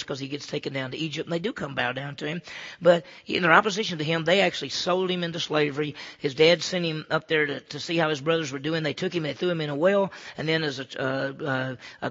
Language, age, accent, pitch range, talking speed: English, 40-59, American, 140-175 Hz, 275 wpm